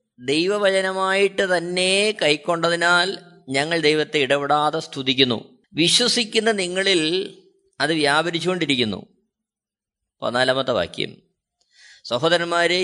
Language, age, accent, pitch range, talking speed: Malayalam, 20-39, native, 155-245 Hz, 65 wpm